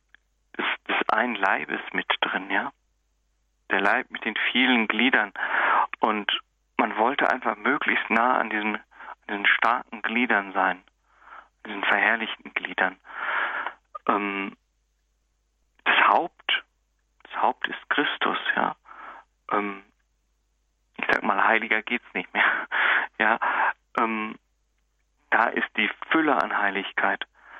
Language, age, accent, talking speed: German, 40-59, German, 120 wpm